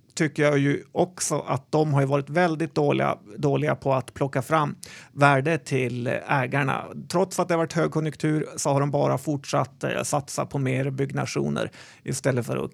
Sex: male